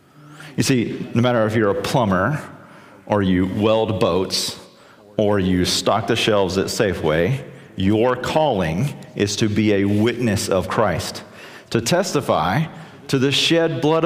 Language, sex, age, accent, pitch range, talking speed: English, male, 40-59, American, 105-145 Hz, 145 wpm